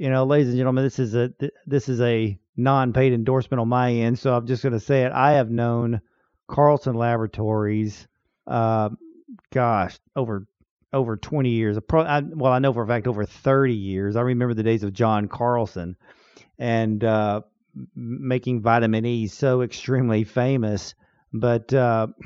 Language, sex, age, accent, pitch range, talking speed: English, male, 40-59, American, 115-135 Hz, 160 wpm